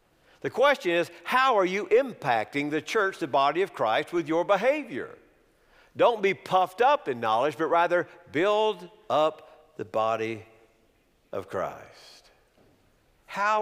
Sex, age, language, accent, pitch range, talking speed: male, 50-69, English, American, 140-205 Hz, 135 wpm